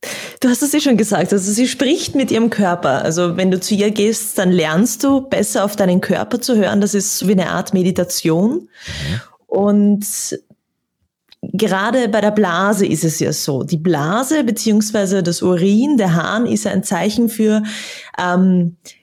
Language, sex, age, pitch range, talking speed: German, female, 20-39, 180-225 Hz, 170 wpm